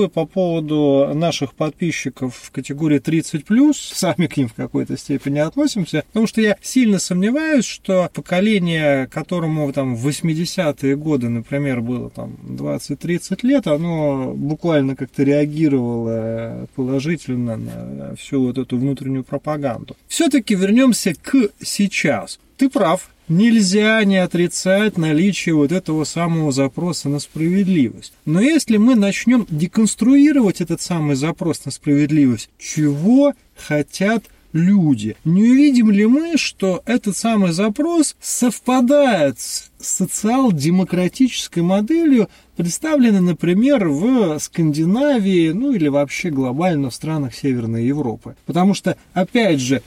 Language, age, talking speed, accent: Russian, 30-49, 120 wpm, native